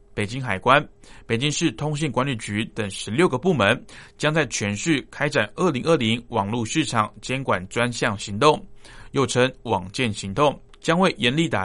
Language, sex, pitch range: Chinese, male, 110-150 Hz